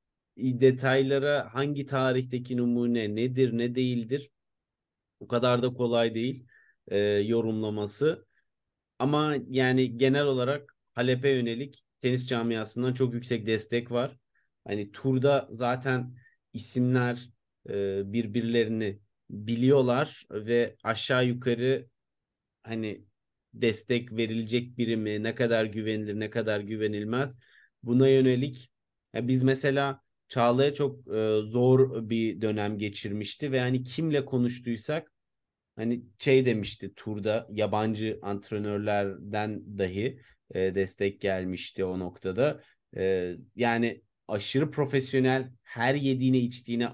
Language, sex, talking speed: Turkish, male, 100 wpm